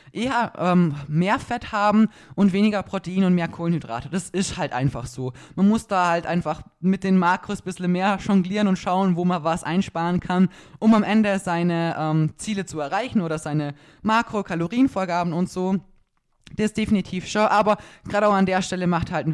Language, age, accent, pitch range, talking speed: German, 20-39, German, 165-205 Hz, 190 wpm